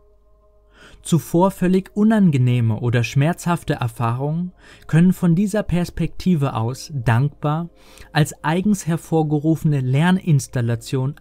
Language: German